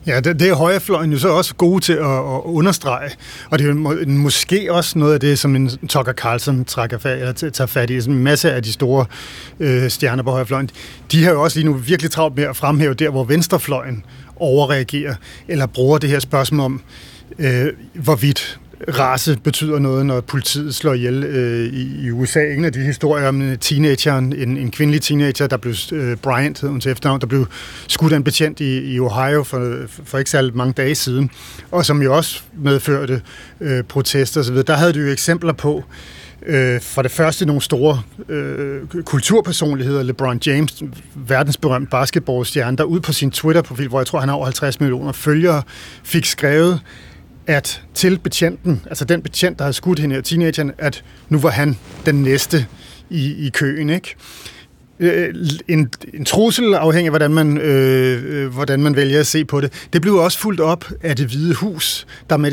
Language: Danish